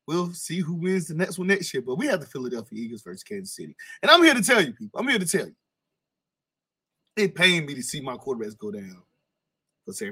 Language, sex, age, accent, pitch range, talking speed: English, male, 20-39, American, 120-205 Hz, 245 wpm